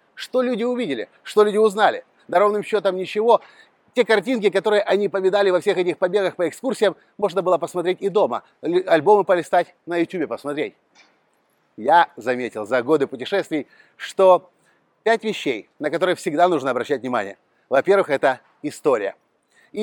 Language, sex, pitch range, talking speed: Russian, male, 155-205 Hz, 150 wpm